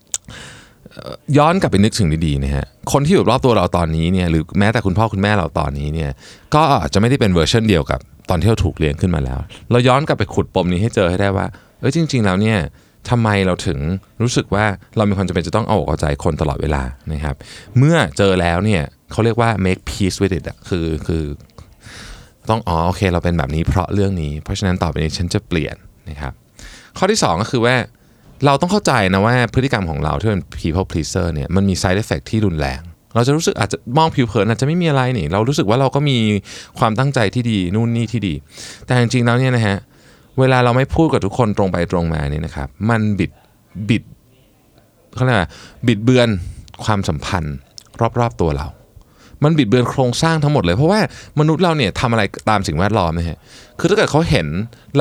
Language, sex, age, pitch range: Thai, male, 20-39, 85-120 Hz